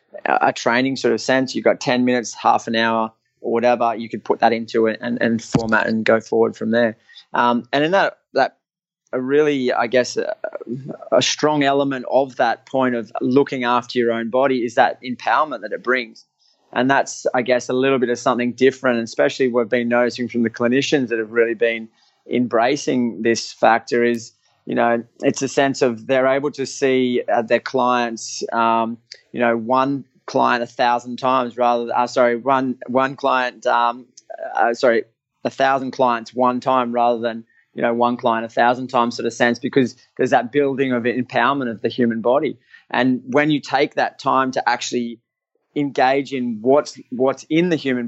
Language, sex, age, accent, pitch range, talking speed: English, male, 20-39, Australian, 120-135 Hz, 190 wpm